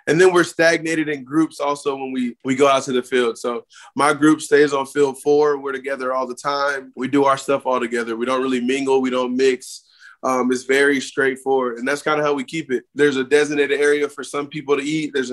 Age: 20-39